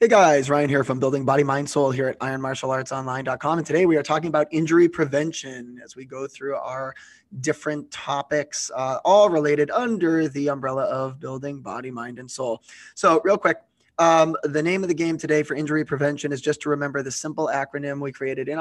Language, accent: English, American